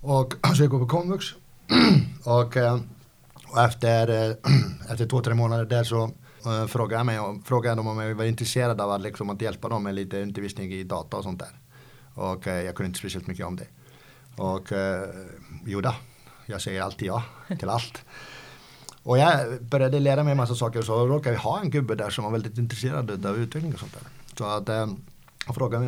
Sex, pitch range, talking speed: male, 95-125 Hz, 195 wpm